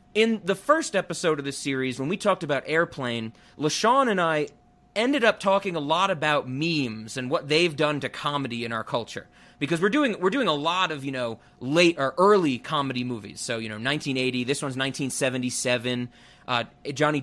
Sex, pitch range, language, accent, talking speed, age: male, 130-170 Hz, English, American, 190 wpm, 30-49